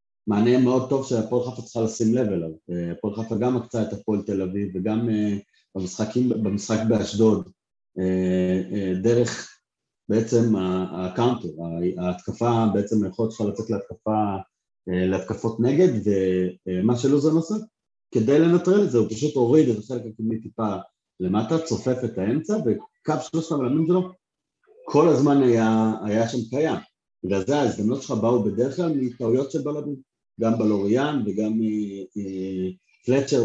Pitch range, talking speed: 100-125 Hz, 125 wpm